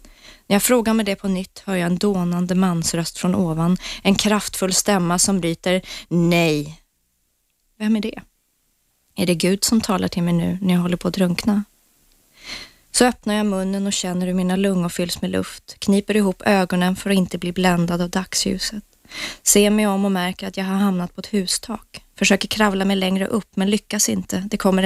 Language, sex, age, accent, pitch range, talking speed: Swedish, female, 20-39, native, 180-200 Hz, 195 wpm